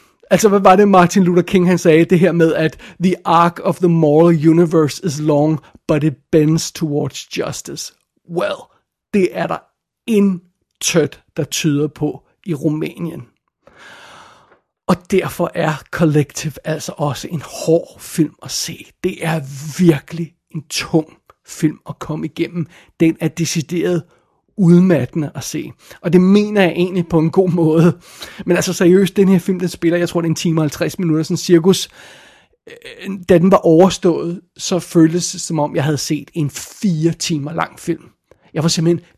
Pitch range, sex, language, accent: 160-180 Hz, male, Danish, native